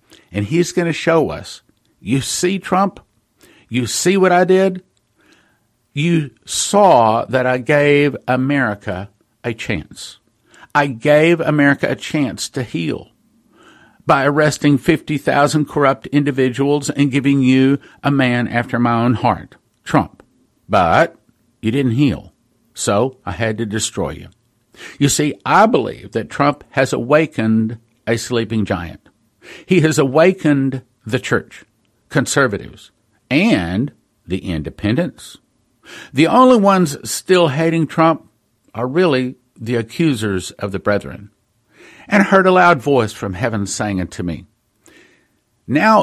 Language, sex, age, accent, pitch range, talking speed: English, male, 50-69, American, 110-150 Hz, 130 wpm